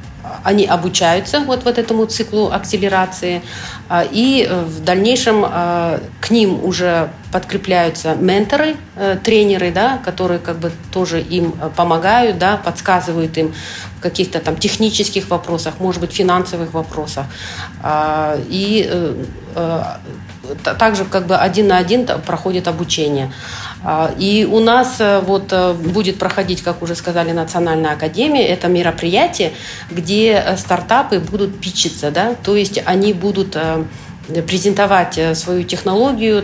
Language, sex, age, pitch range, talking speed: Russian, female, 40-59, 165-200 Hz, 115 wpm